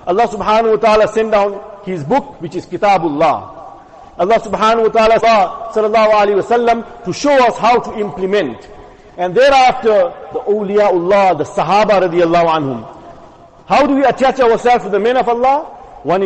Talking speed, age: 160 wpm, 50-69